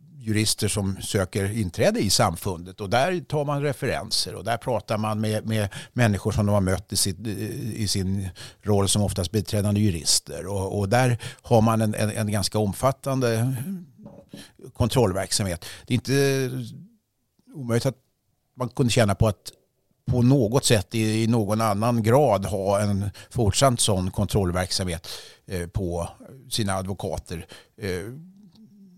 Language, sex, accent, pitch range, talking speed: English, male, Swedish, 95-120 Hz, 145 wpm